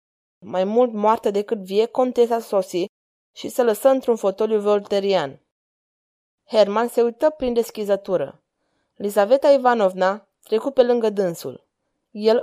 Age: 20-39